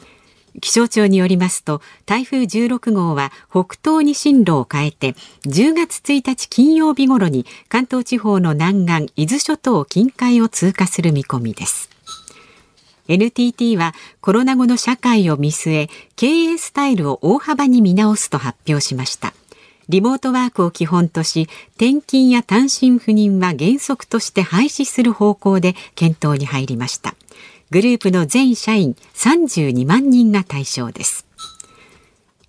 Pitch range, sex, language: 160-250 Hz, female, Japanese